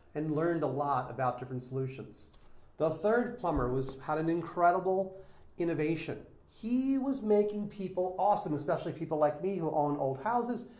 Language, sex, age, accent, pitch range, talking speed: English, male, 40-59, American, 150-205 Hz, 155 wpm